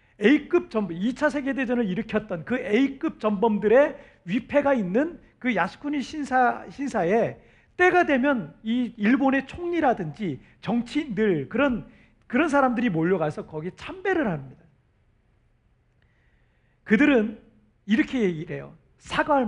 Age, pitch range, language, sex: 40-59, 180-280 Hz, Korean, male